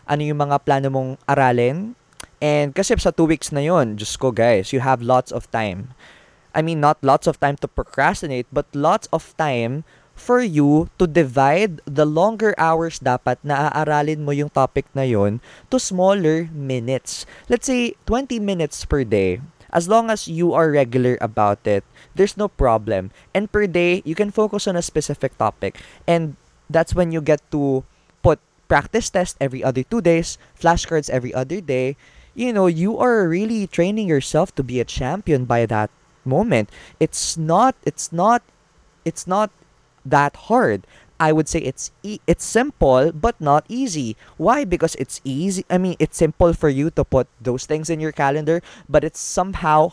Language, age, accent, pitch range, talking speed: Filipino, 20-39, native, 135-180 Hz, 175 wpm